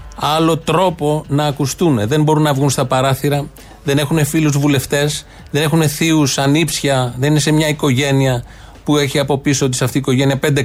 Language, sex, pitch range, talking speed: Greek, male, 125-165 Hz, 185 wpm